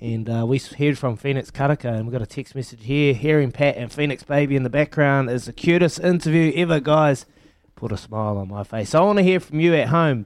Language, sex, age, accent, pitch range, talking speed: English, male, 20-39, Australian, 120-145 Hz, 250 wpm